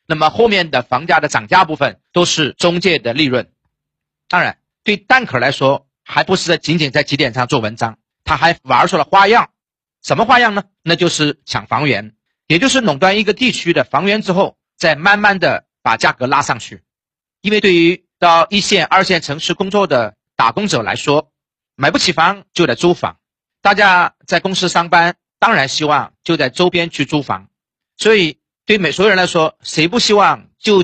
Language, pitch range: Chinese, 150-200 Hz